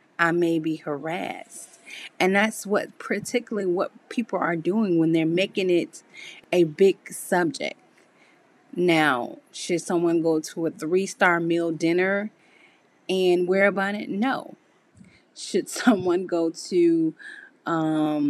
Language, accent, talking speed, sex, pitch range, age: English, American, 125 wpm, female, 165-210 Hz, 30-49